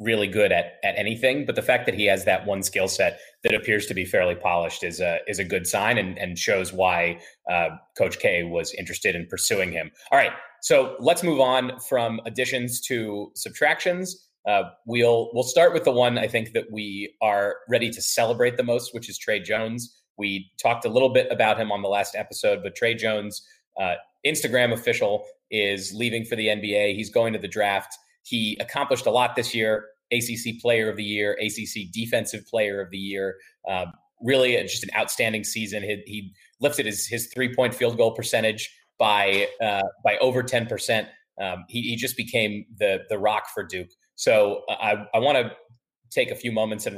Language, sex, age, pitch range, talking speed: English, male, 30-49, 105-130 Hz, 200 wpm